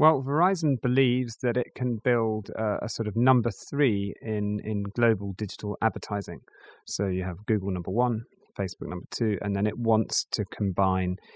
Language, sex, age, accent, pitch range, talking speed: English, male, 30-49, British, 100-115 Hz, 170 wpm